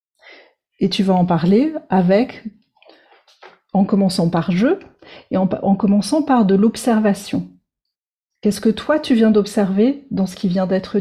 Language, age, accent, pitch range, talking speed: French, 40-59, French, 185-225 Hz, 165 wpm